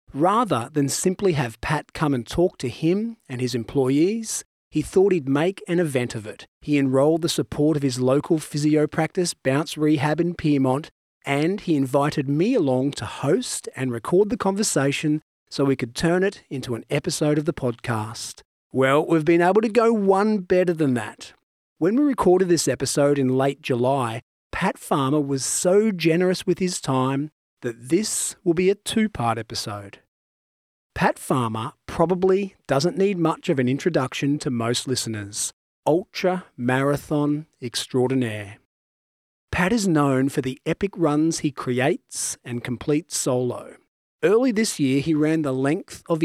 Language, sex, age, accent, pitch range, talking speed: English, male, 40-59, Australian, 130-170 Hz, 160 wpm